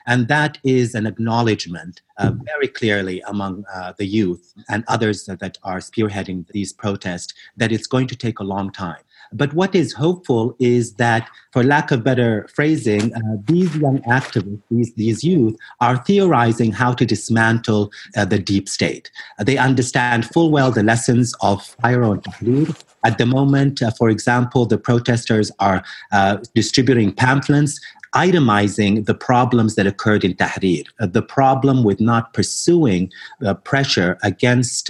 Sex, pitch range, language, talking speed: male, 100-130 Hz, English, 155 wpm